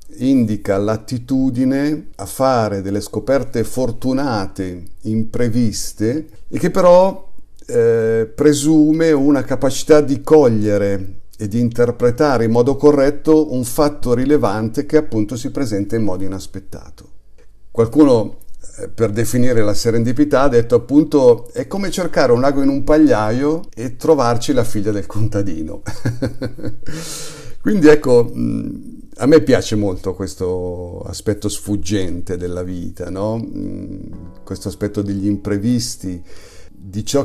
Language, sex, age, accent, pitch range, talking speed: Italian, male, 50-69, native, 105-140 Hz, 120 wpm